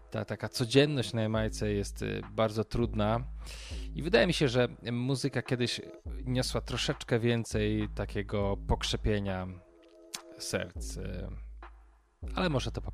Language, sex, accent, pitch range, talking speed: Polish, male, native, 100-115 Hz, 115 wpm